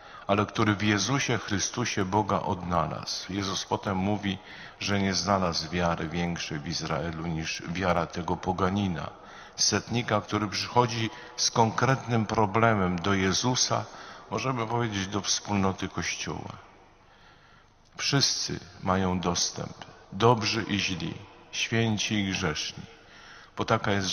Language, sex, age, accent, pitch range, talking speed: Polish, male, 50-69, native, 90-105 Hz, 115 wpm